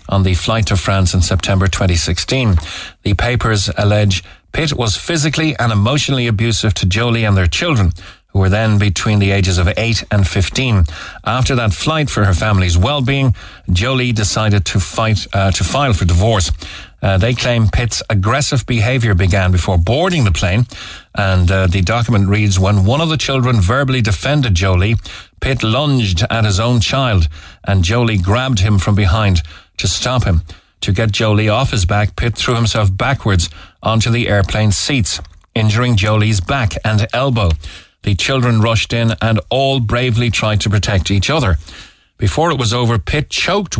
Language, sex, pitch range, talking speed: English, male, 95-120 Hz, 170 wpm